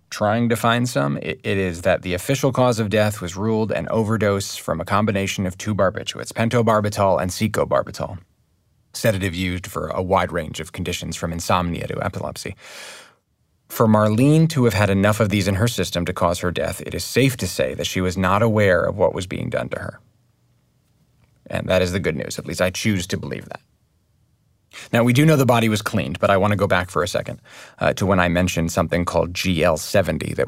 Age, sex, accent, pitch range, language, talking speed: 30-49, male, American, 90-115 Hz, English, 215 wpm